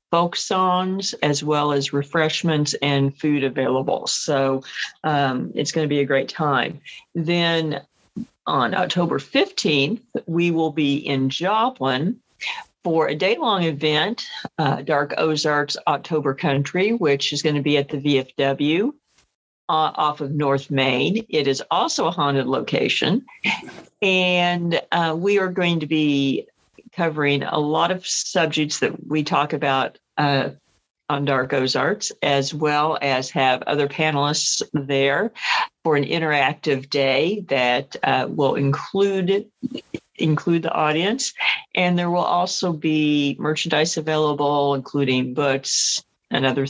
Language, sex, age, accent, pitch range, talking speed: English, female, 50-69, American, 140-170 Hz, 135 wpm